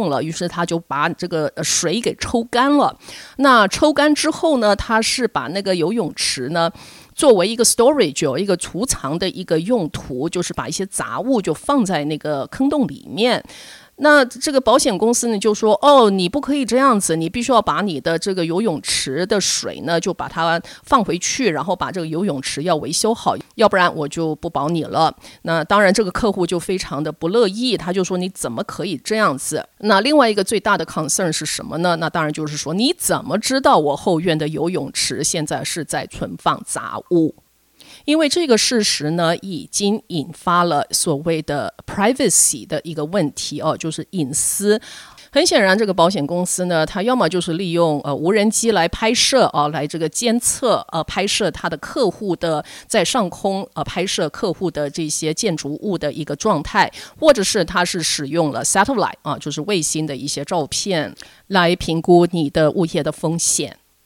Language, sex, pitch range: English, female, 160-220 Hz